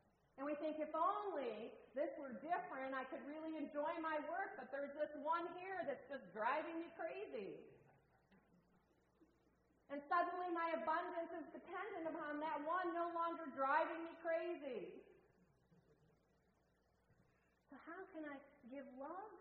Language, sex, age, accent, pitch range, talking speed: English, female, 40-59, American, 260-335 Hz, 135 wpm